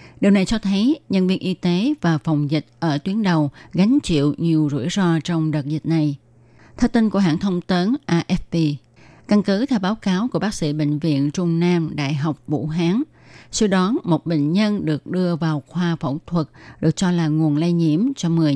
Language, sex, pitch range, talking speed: Vietnamese, female, 155-185 Hz, 210 wpm